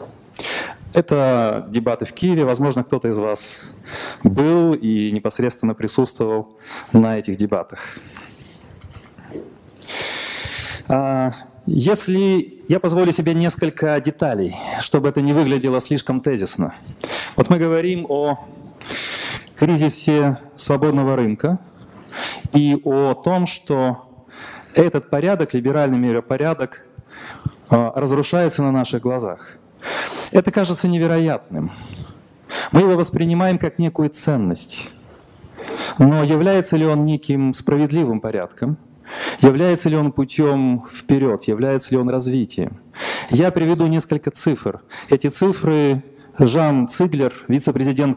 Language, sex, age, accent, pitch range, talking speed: Russian, male, 30-49, native, 125-160 Hz, 100 wpm